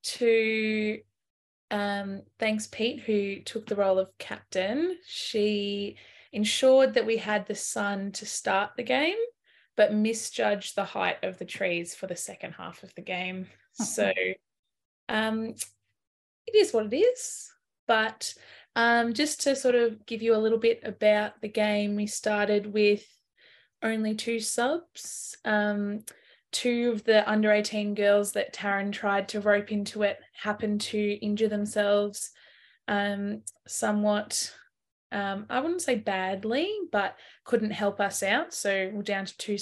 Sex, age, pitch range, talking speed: female, 20-39, 200-225 Hz, 145 wpm